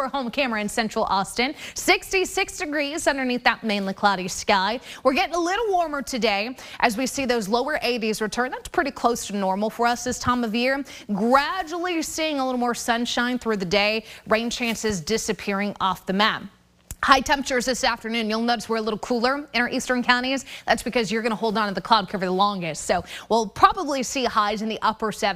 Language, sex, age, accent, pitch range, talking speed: English, female, 20-39, American, 200-255 Hz, 205 wpm